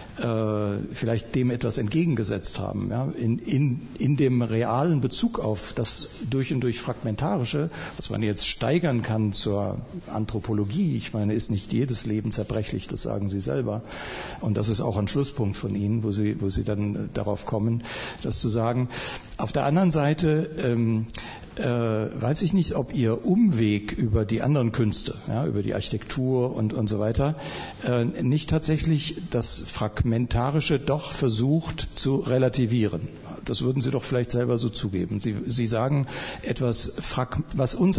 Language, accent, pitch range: German, German, 110-135 Hz